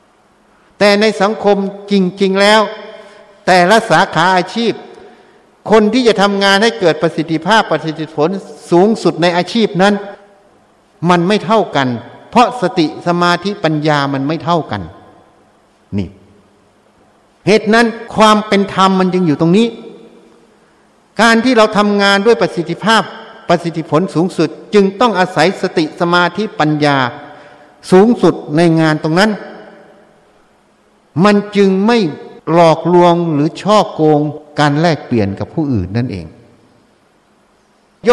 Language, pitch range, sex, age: Thai, 155-205 Hz, male, 60-79